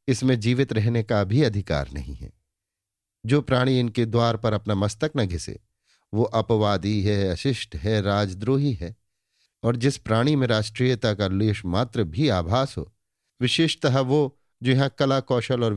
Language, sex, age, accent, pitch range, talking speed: Hindi, male, 50-69, native, 100-125 Hz, 155 wpm